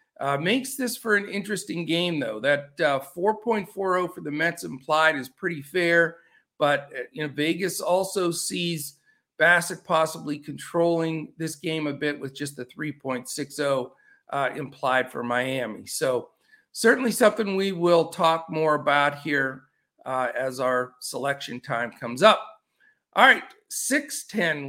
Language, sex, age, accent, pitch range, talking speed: English, male, 50-69, American, 145-200 Hz, 140 wpm